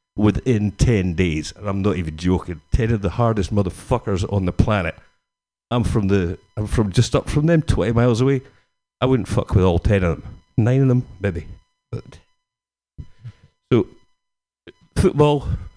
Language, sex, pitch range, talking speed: English, male, 95-125 Hz, 160 wpm